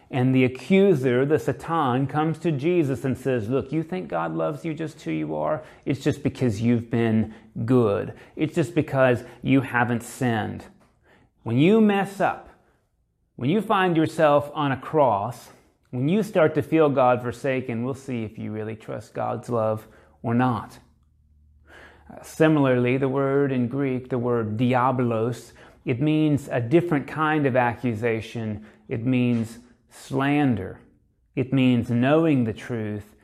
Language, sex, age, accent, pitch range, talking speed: English, male, 30-49, American, 120-145 Hz, 150 wpm